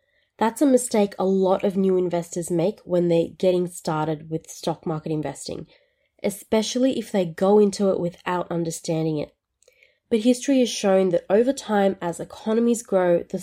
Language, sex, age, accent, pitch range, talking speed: English, female, 20-39, Australian, 175-220 Hz, 165 wpm